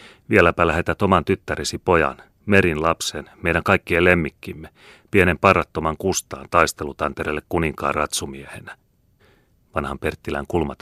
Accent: native